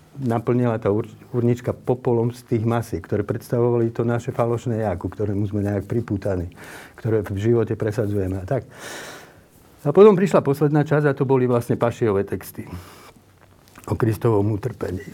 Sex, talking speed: male, 155 wpm